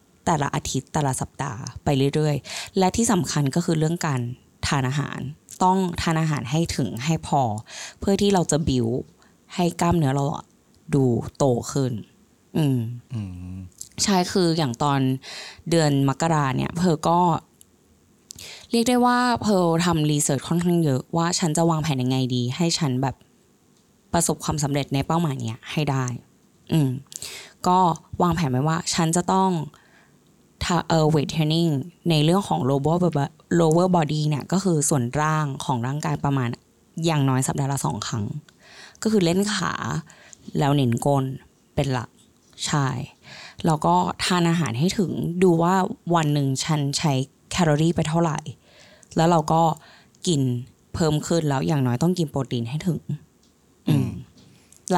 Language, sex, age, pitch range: Thai, female, 20-39, 135-170 Hz